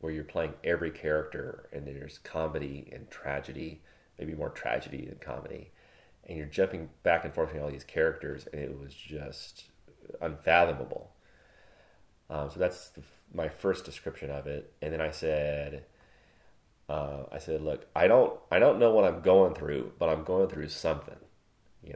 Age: 30-49